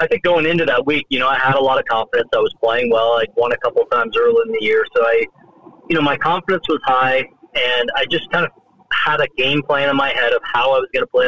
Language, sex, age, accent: English, male, 40-59, American